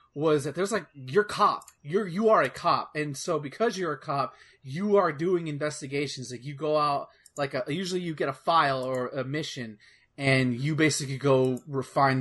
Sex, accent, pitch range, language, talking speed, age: male, American, 130-170 Hz, English, 195 wpm, 30-49